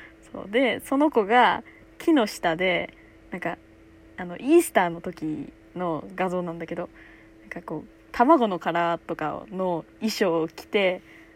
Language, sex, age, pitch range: Japanese, female, 20-39, 155-260 Hz